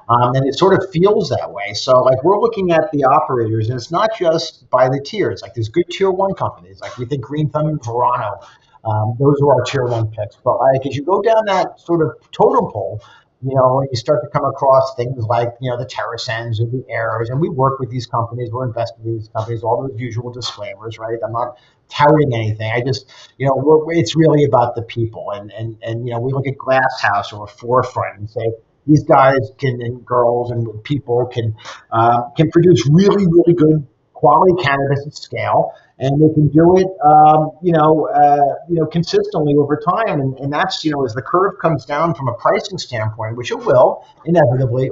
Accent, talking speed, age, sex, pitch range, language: American, 220 wpm, 50-69, male, 120-150 Hz, English